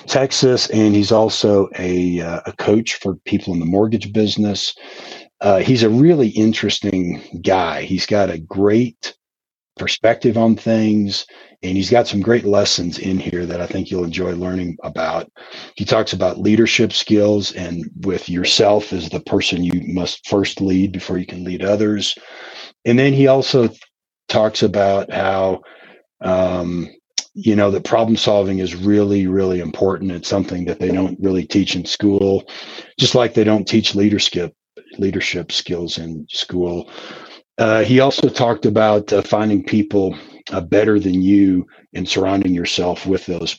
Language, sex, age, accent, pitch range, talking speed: English, male, 40-59, American, 90-110 Hz, 160 wpm